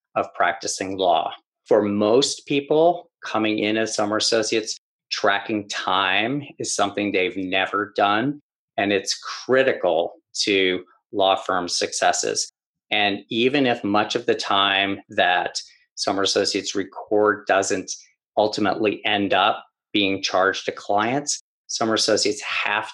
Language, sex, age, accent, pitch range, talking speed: English, male, 40-59, American, 100-115 Hz, 125 wpm